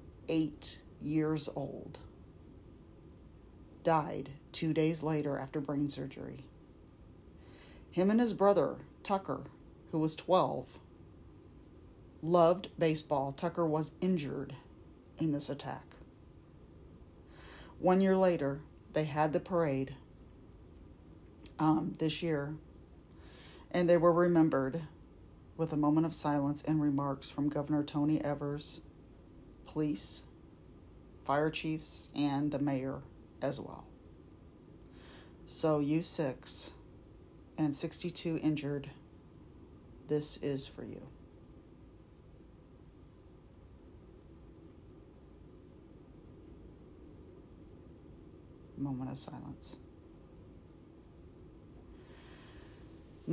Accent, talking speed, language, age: American, 80 wpm, English, 40-59